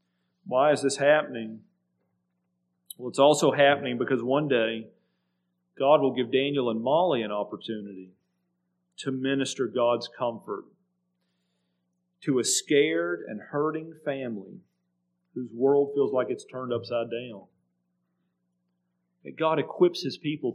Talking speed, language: 120 wpm, English